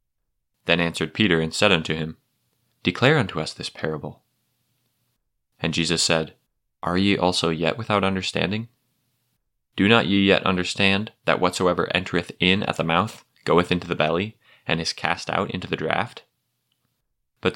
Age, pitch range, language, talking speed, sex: 20-39, 85-100 Hz, English, 155 wpm, male